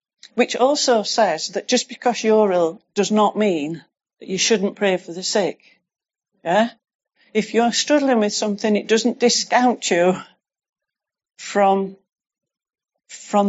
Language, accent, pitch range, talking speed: English, British, 185-215 Hz, 135 wpm